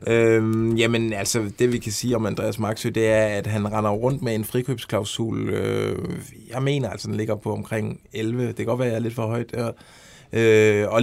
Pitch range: 105-135 Hz